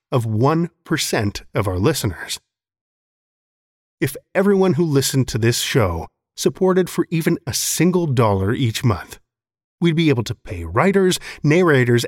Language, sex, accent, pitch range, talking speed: English, male, American, 115-165 Hz, 135 wpm